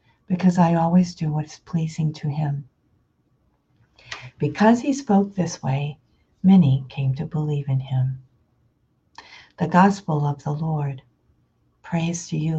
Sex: female